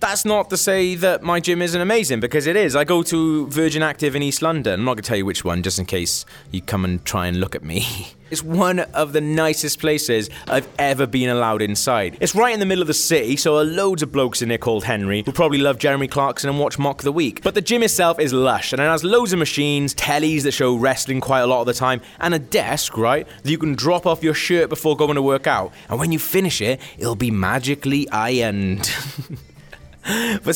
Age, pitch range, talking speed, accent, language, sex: 20-39, 120-165 Hz, 245 wpm, British, English, male